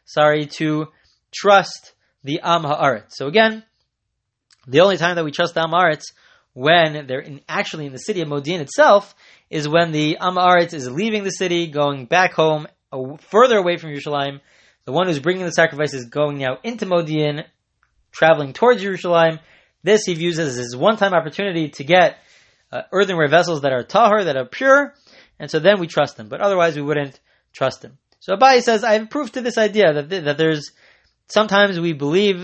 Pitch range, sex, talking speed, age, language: 150-205 Hz, male, 190 wpm, 20-39, English